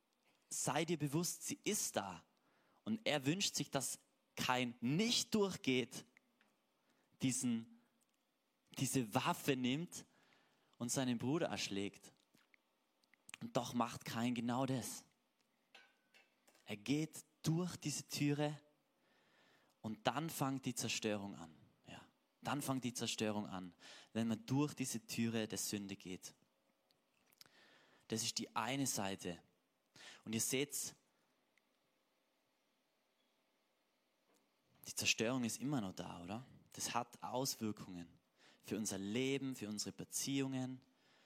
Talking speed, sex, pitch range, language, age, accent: 110 wpm, male, 105-145 Hz, German, 20-39, German